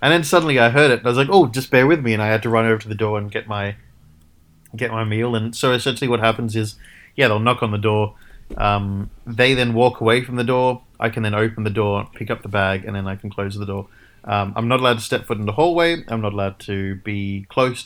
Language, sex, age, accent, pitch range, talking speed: English, male, 20-39, Australian, 100-120 Hz, 280 wpm